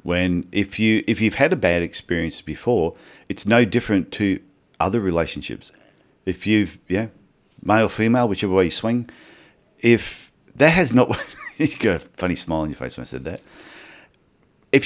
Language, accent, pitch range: English, Australian, 90-110 Hz